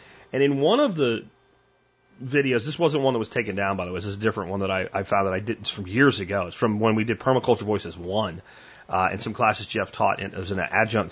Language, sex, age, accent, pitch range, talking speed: German, male, 30-49, American, 105-145 Hz, 265 wpm